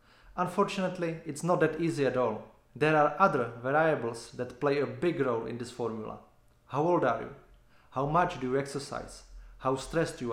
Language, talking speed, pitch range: English, 180 wpm, 125-165 Hz